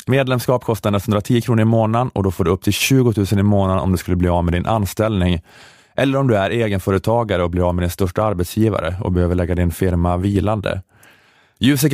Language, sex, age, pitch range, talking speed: Swedish, male, 20-39, 95-115 Hz, 215 wpm